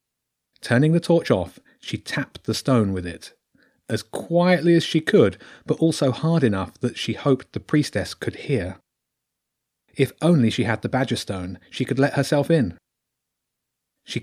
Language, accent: English, British